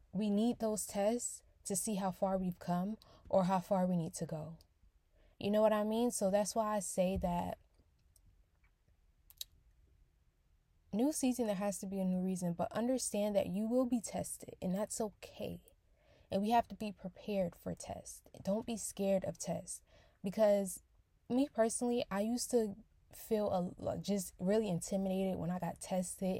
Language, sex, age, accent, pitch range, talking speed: English, female, 10-29, American, 165-210 Hz, 175 wpm